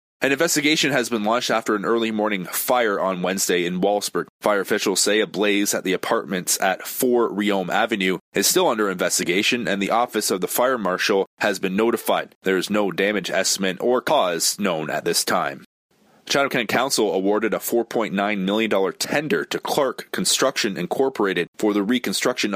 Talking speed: 175 wpm